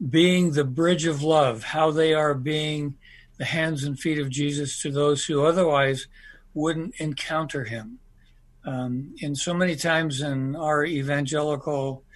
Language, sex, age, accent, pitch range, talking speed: English, male, 60-79, American, 140-170 Hz, 150 wpm